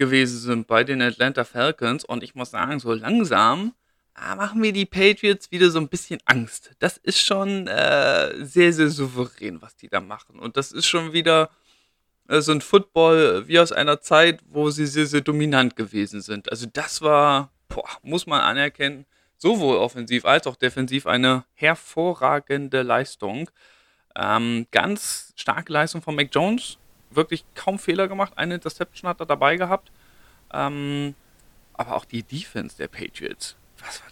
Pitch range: 130-170 Hz